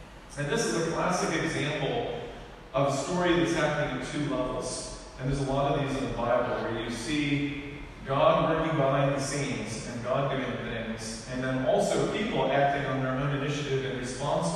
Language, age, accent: English, 40-59, American